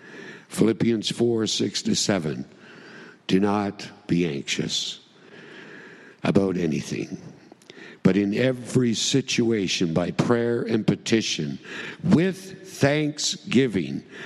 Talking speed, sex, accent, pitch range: 90 wpm, male, American, 115-165 Hz